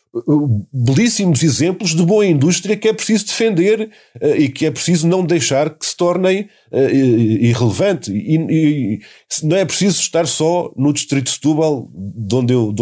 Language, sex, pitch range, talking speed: Portuguese, male, 130-165 Hz, 140 wpm